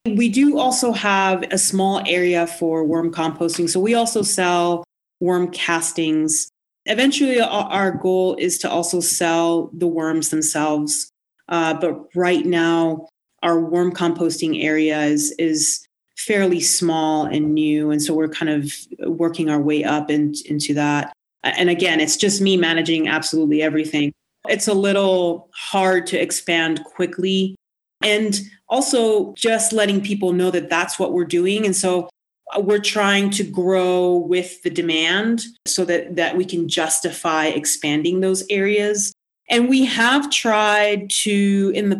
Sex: female